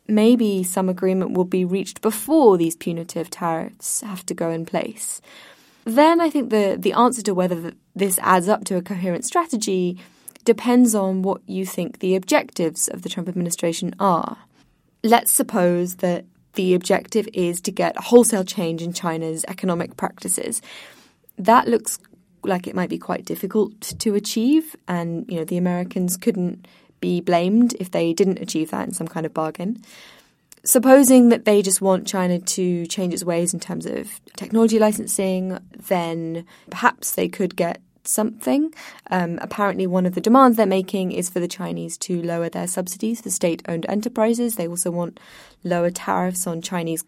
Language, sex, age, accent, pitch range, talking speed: English, female, 20-39, British, 175-220 Hz, 170 wpm